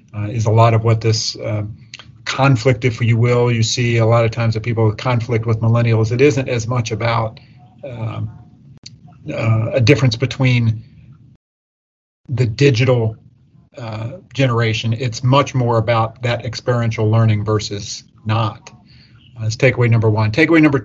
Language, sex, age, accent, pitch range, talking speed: English, male, 40-59, American, 110-130 Hz, 155 wpm